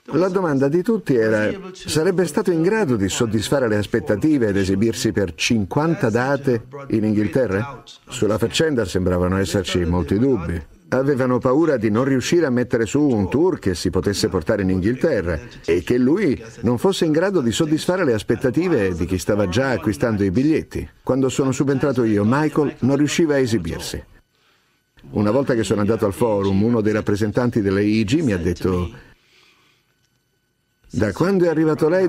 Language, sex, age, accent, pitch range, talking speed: Italian, male, 50-69, native, 105-145 Hz, 165 wpm